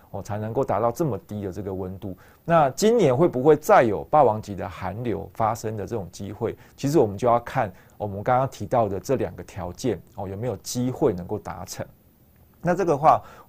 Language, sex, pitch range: Chinese, male, 95-125 Hz